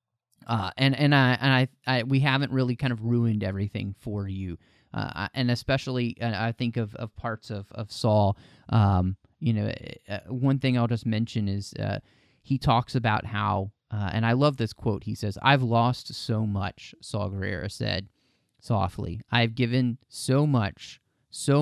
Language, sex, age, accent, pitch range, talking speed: English, male, 30-49, American, 105-125 Hz, 175 wpm